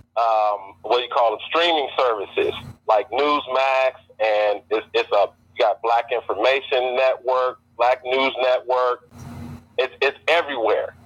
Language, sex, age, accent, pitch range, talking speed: English, male, 40-59, American, 120-160 Hz, 135 wpm